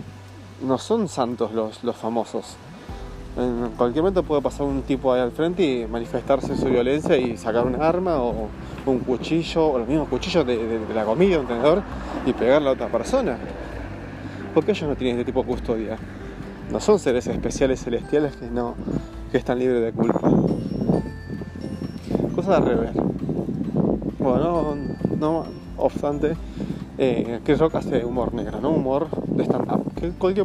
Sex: male